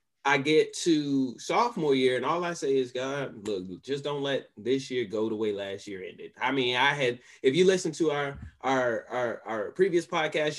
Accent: American